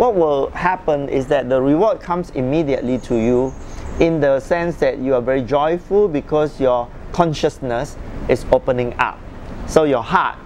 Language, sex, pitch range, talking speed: English, male, 130-170 Hz, 160 wpm